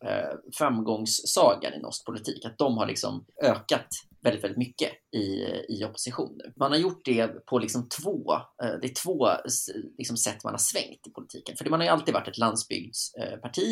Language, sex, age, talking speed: Swedish, male, 20-39, 185 wpm